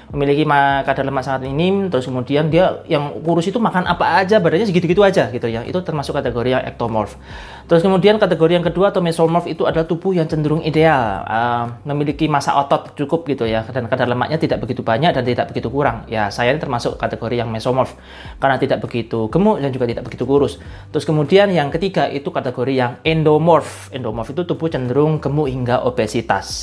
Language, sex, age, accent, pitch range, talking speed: Indonesian, male, 20-39, native, 125-165 Hz, 190 wpm